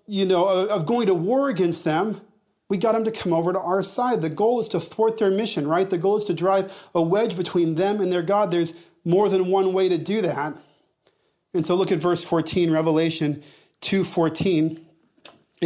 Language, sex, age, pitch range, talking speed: English, male, 40-59, 165-200 Hz, 205 wpm